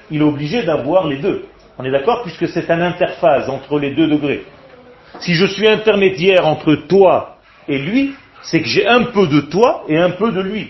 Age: 40-59